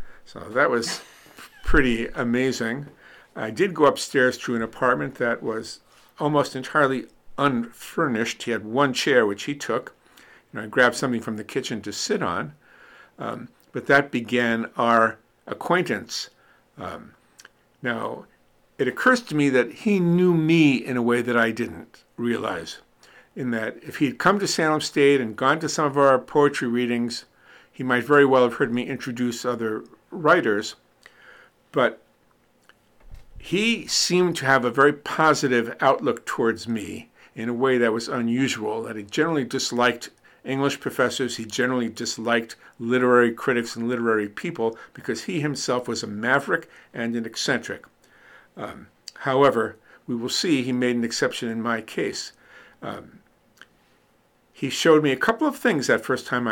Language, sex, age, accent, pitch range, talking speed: English, male, 50-69, American, 115-140 Hz, 155 wpm